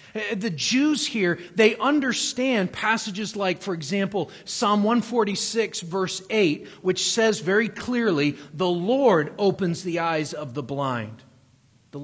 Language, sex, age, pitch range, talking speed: English, male, 40-59, 145-215 Hz, 130 wpm